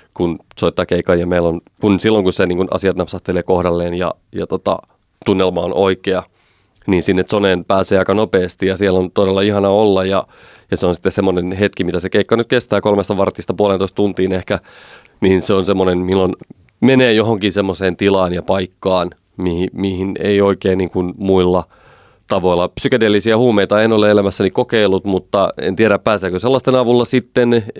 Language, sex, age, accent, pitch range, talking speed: Finnish, male, 30-49, native, 90-105 Hz, 170 wpm